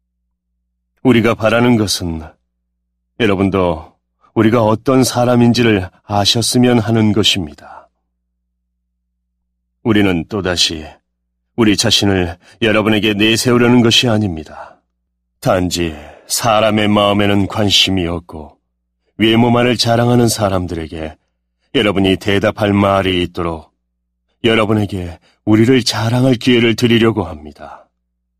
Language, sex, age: Korean, male, 30-49